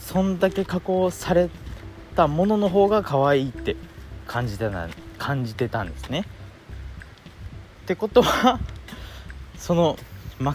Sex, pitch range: male, 95-160 Hz